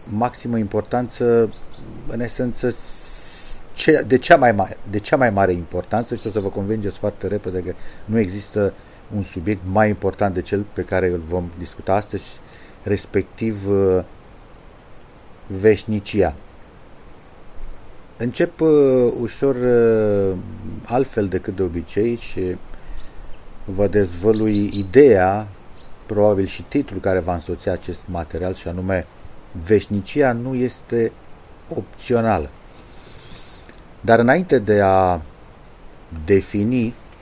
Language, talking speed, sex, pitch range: Romanian, 110 wpm, male, 95-120 Hz